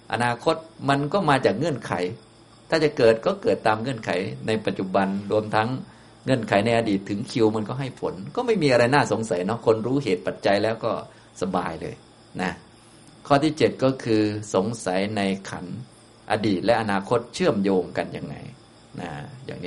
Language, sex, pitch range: Thai, male, 100-120 Hz